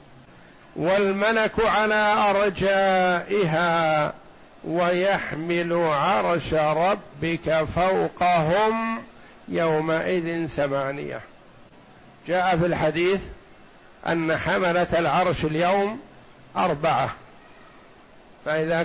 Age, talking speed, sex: 60-79, 55 wpm, male